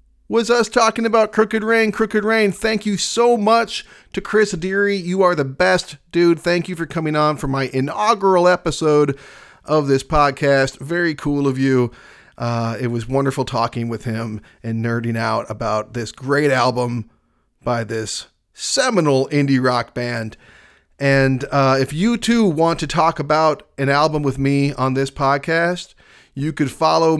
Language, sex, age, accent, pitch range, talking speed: English, male, 40-59, American, 125-165 Hz, 165 wpm